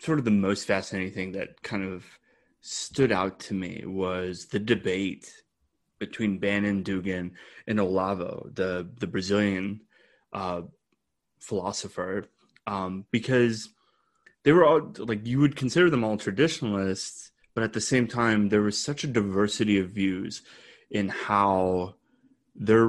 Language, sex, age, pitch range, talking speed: English, male, 20-39, 95-115 Hz, 140 wpm